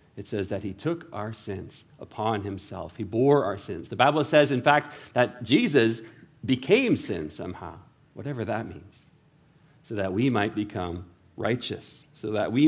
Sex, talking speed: male, 165 wpm